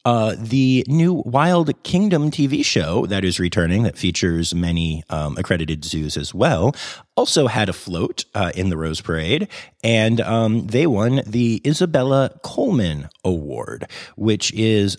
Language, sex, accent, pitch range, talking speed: English, male, American, 90-125 Hz, 150 wpm